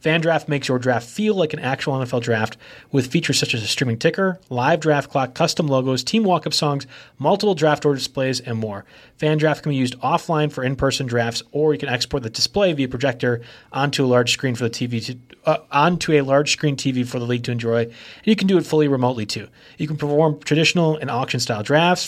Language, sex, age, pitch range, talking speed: English, male, 30-49, 125-155 Hz, 220 wpm